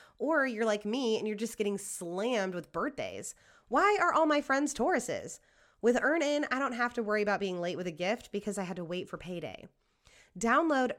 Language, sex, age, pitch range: English, female, 20-39, 180-245 Hz